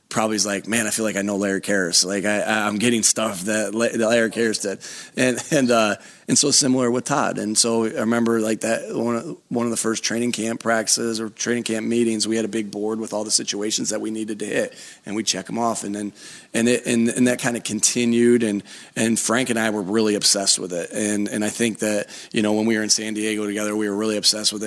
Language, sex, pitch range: English, male, 105-115 Hz